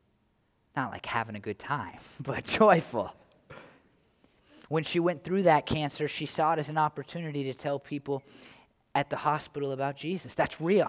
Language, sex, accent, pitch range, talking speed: English, male, American, 135-160 Hz, 165 wpm